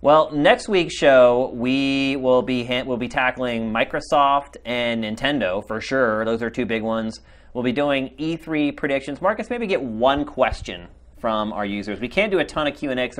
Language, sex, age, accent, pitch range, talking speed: English, male, 30-49, American, 115-150 Hz, 190 wpm